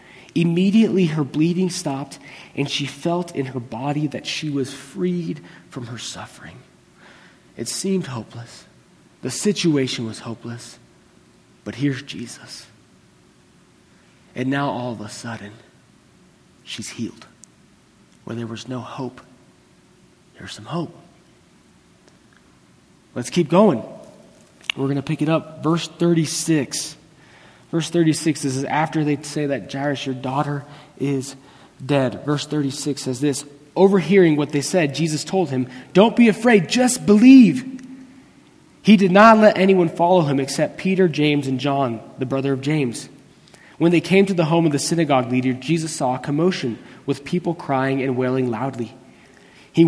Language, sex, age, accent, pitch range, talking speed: English, male, 30-49, American, 130-170 Hz, 145 wpm